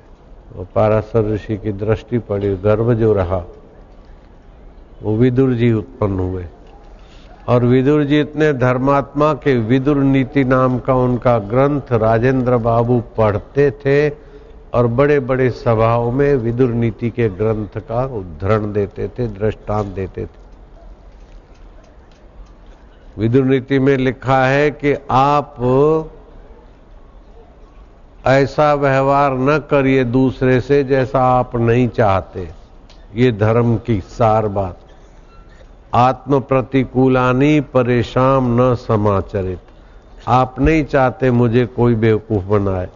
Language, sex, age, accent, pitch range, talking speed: Hindi, male, 60-79, native, 105-135 Hz, 110 wpm